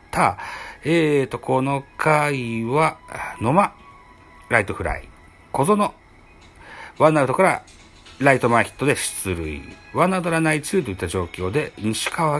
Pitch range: 95-155 Hz